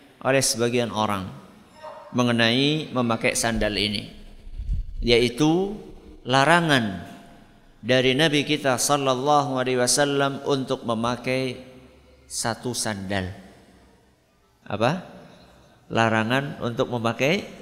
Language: Indonesian